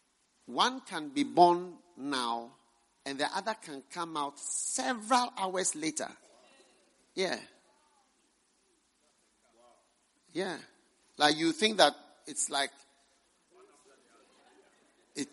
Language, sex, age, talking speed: English, male, 50-69, 90 wpm